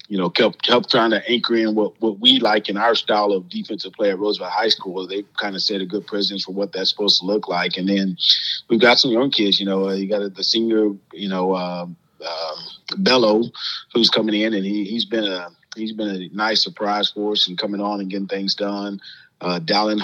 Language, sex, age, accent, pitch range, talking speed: English, male, 30-49, American, 95-105 Hz, 235 wpm